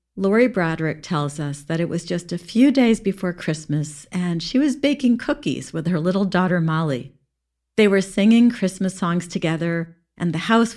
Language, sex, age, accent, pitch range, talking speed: English, female, 50-69, American, 160-215 Hz, 180 wpm